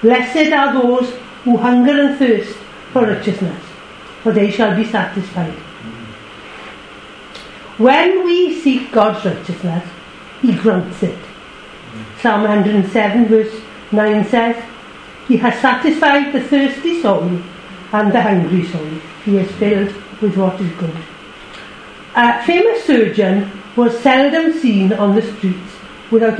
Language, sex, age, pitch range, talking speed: English, female, 60-79, 200-280 Hz, 125 wpm